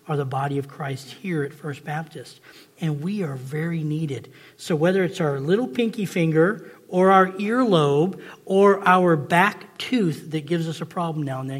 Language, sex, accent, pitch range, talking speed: English, male, American, 145-185 Hz, 185 wpm